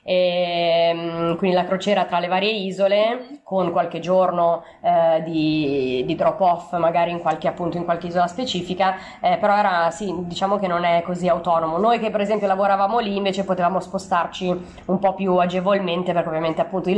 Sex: female